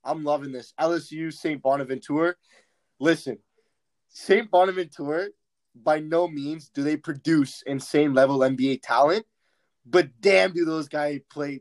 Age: 20-39